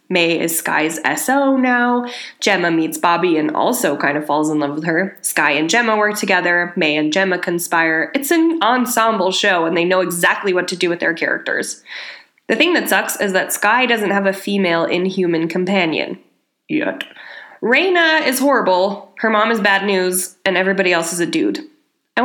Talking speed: 185 wpm